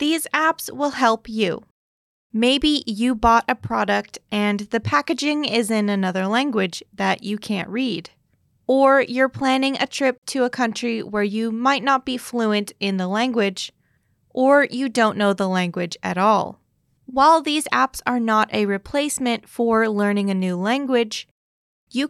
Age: 20-39